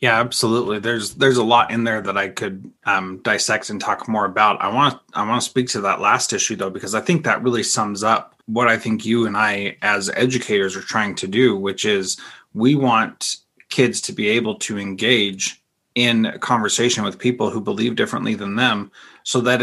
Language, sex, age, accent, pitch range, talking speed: English, male, 30-49, American, 105-125 Hz, 210 wpm